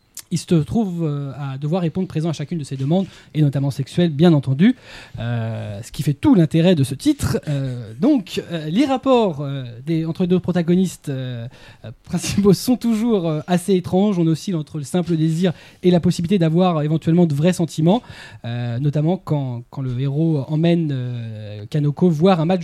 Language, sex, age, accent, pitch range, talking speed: French, male, 20-39, French, 135-175 Hz, 185 wpm